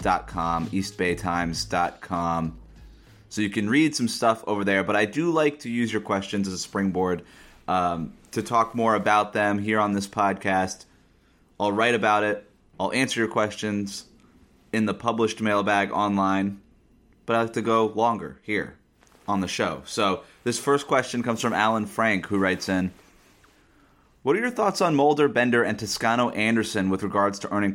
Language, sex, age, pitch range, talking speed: English, male, 30-49, 95-115 Hz, 170 wpm